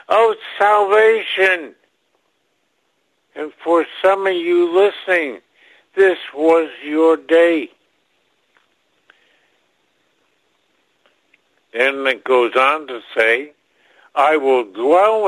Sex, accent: male, American